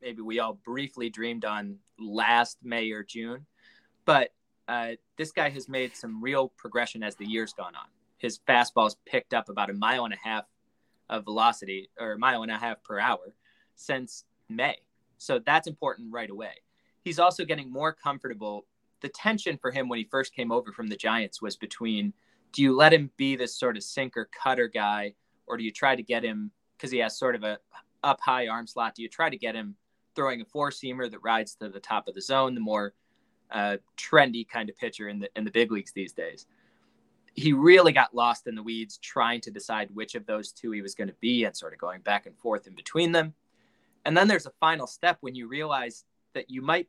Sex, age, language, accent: male, 20-39, English, American